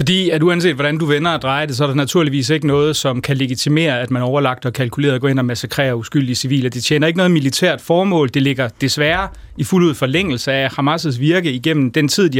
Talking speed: 235 wpm